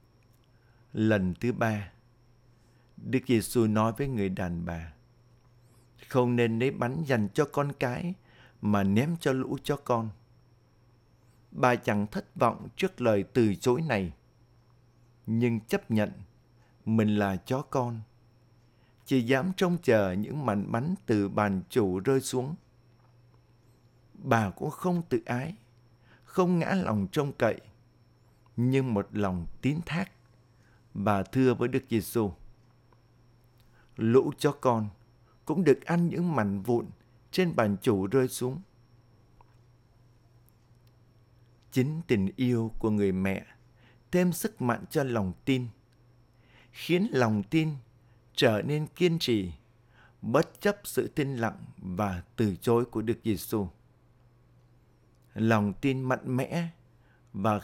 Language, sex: Vietnamese, male